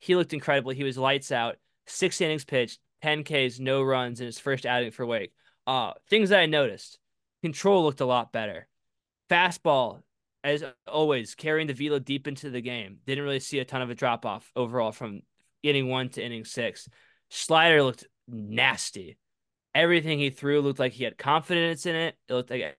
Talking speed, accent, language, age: 185 wpm, American, English, 20-39